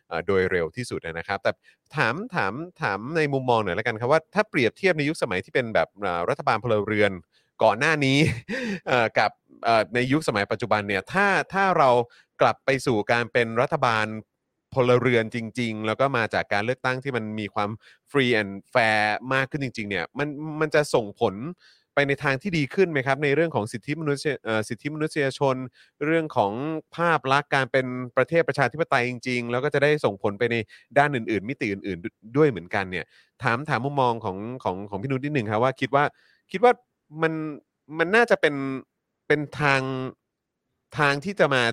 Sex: male